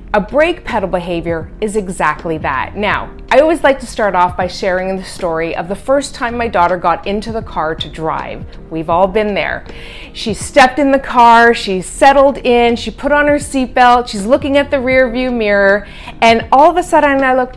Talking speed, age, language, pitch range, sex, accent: 210 wpm, 30-49, English, 195-265 Hz, female, American